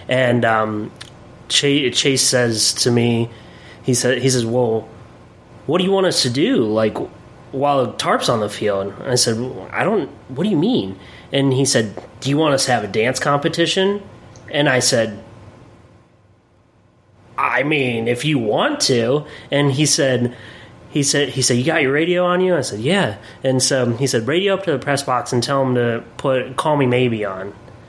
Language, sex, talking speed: English, male, 190 wpm